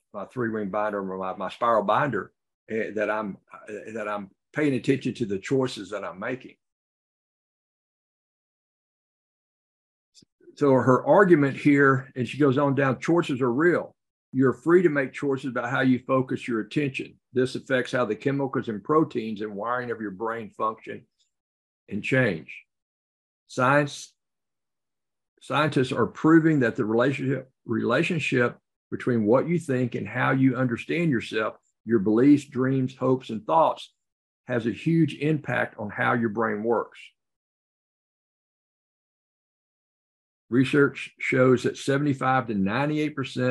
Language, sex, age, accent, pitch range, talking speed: English, male, 60-79, American, 110-140 Hz, 130 wpm